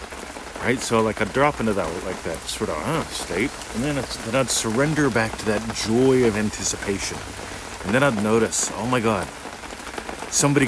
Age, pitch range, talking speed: 40-59, 100-125 Hz, 185 wpm